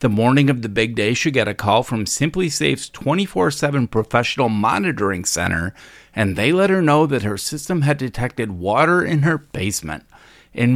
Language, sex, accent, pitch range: English, male, American, 110-160 Hz